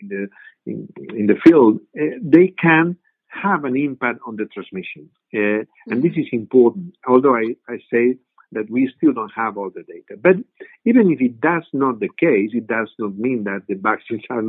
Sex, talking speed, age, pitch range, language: male, 195 wpm, 50-69, 105-135 Hz, English